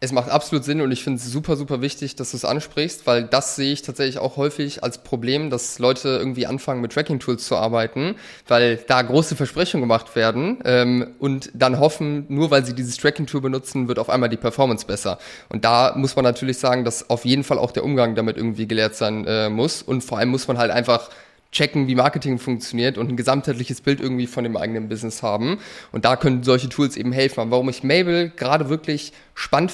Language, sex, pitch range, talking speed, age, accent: German, male, 120-140 Hz, 215 wpm, 20-39, German